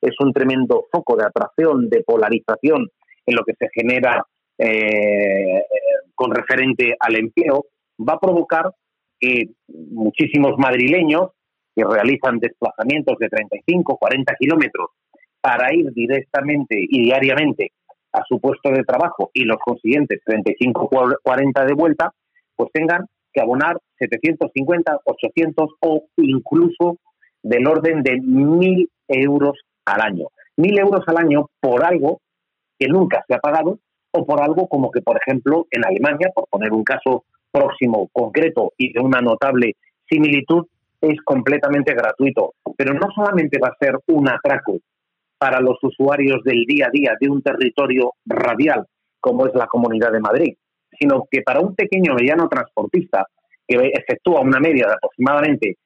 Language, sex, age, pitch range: Spanish, male, 40-59, 130-175 Hz